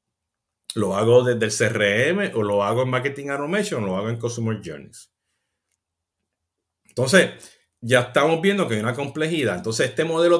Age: 50-69